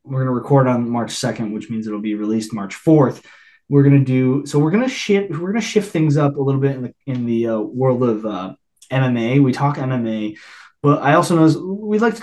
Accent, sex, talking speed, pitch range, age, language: American, male, 250 wpm, 110-145 Hz, 20-39, English